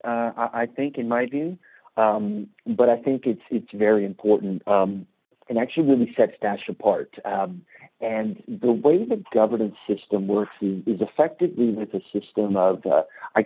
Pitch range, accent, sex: 100-115 Hz, American, male